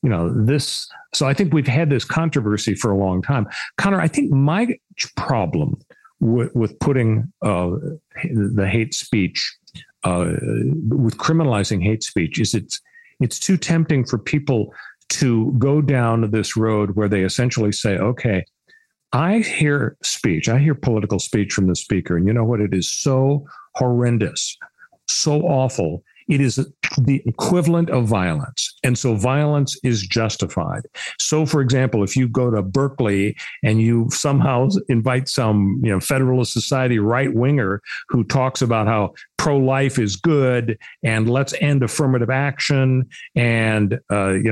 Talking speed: 150 wpm